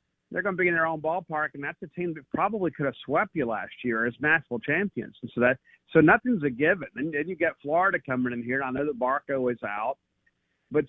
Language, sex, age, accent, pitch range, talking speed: English, male, 50-69, American, 125-150 Hz, 255 wpm